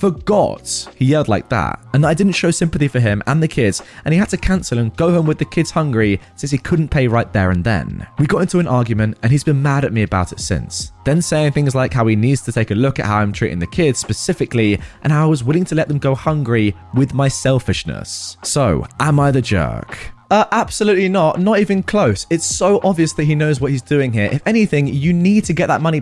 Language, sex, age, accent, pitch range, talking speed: English, male, 20-39, British, 110-155 Hz, 250 wpm